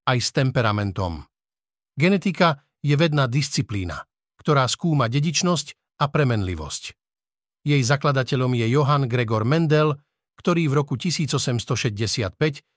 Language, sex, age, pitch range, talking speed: Slovak, male, 50-69, 125-160 Hz, 105 wpm